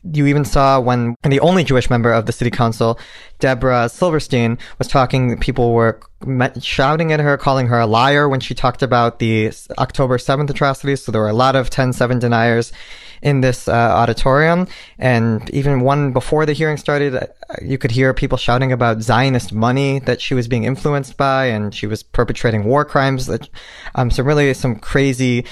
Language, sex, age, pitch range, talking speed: English, male, 20-39, 115-135 Hz, 185 wpm